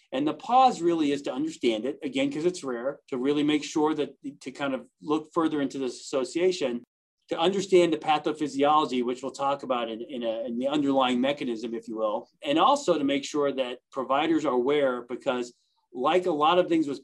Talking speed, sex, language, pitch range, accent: 210 wpm, male, English, 125-180 Hz, American